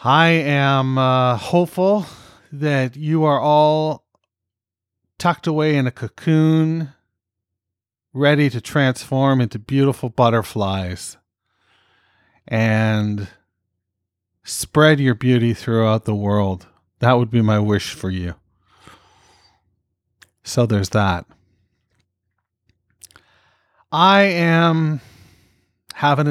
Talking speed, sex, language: 90 wpm, male, English